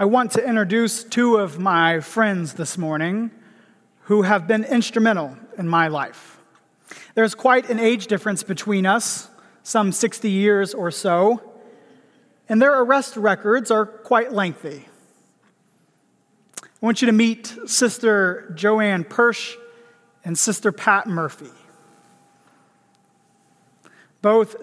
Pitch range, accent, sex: 195-235 Hz, American, male